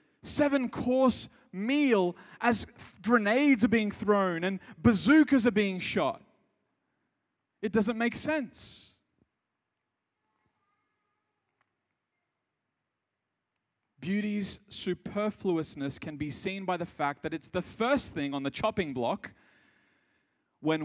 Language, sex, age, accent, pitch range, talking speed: English, male, 20-39, Australian, 170-235 Hz, 100 wpm